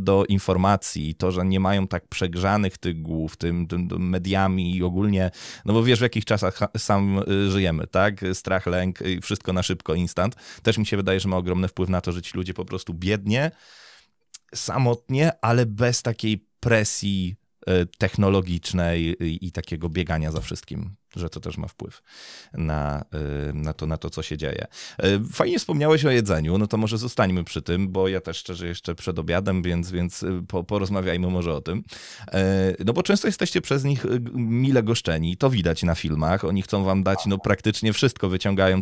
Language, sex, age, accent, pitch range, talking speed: Polish, male, 20-39, native, 90-105 Hz, 175 wpm